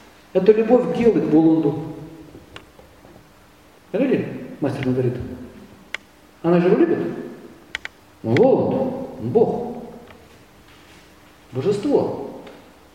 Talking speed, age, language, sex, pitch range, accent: 75 wpm, 40-59, Russian, male, 140-210 Hz, native